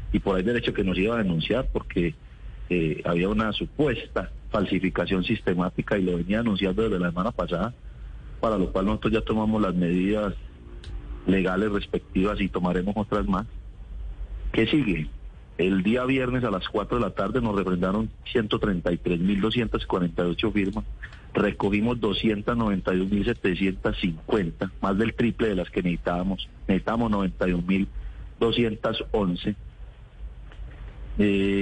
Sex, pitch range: male, 95-115 Hz